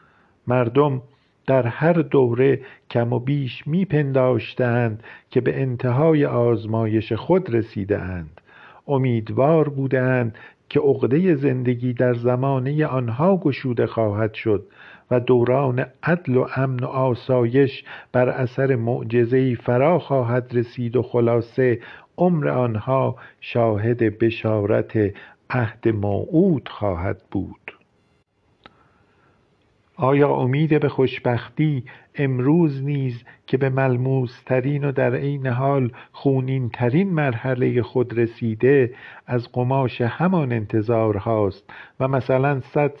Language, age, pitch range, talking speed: Persian, 50-69, 120-135 Hz, 105 wpm